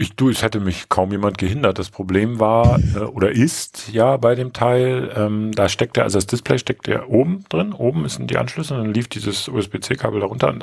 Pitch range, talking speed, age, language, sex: 105-140 Hz, 215 wpm, 40-59, German, male